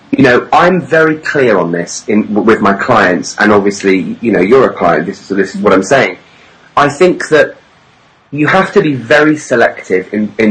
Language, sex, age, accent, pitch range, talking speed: English, male, 30-49, British, 95-130 Hz, 195 wpm